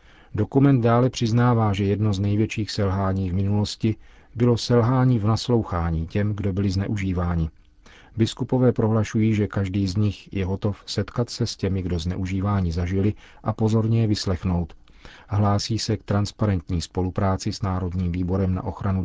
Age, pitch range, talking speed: 40-59, 95-110 Hz, 150 wpm